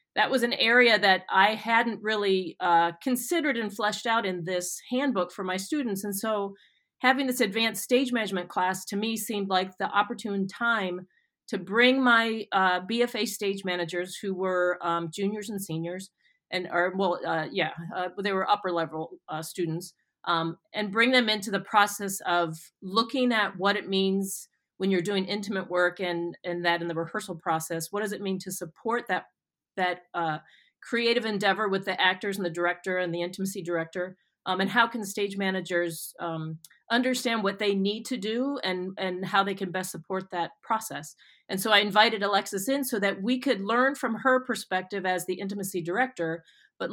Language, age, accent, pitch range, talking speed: English, 40-59, American, 180-220 Hz, 185 wpm